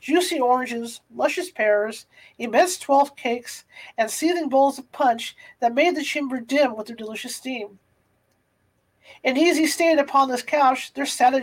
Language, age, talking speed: English, 40-59, 160 wpm